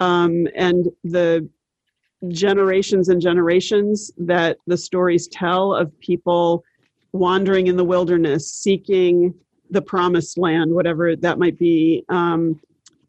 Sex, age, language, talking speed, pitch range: male, 40-59, English, 115 wpm, 170-190 Hz